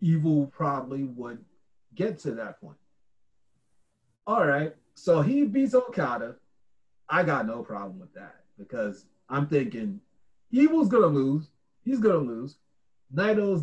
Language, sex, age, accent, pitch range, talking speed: English, male, 30-49, American, 140-215 Hz, 135 wpm